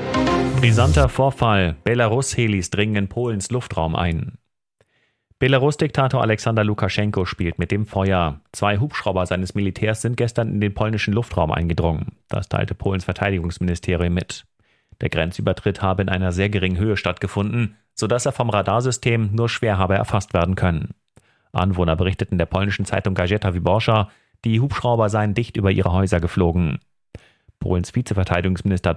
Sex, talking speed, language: male, 140 wpm, German